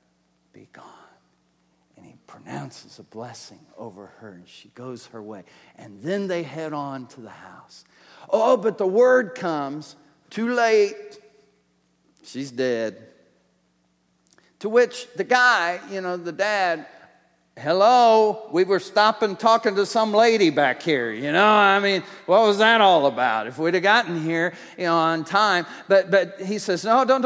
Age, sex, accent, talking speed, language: 50-69, male, American, 160 wpm, English